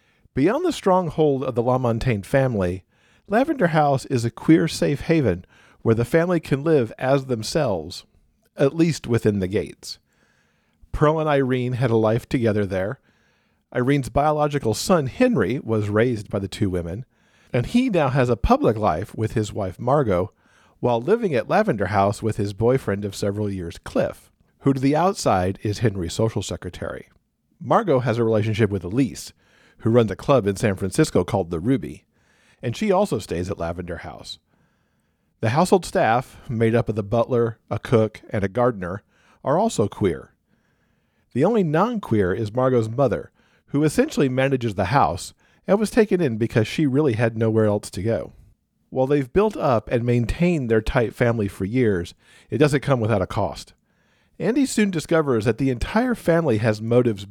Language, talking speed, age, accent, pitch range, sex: English, 170 wpm, 50-69, American, 105-145 Hz, male